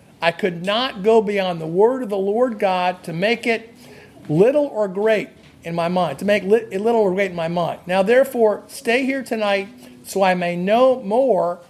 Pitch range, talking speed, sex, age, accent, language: 185-245 Hz, 200 wpm, male, 50-69, American, English